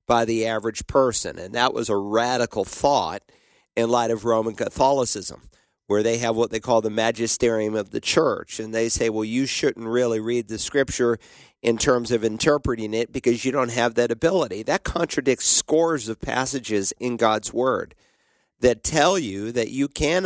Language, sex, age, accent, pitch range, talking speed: English, male, 50-69, American, 110-130 Hz, 180 wpm